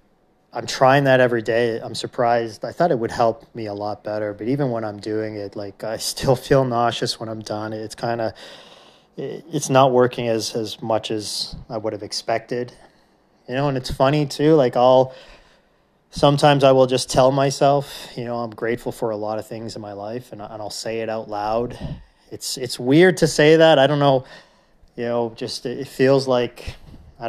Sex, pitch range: male, 105-130 Hz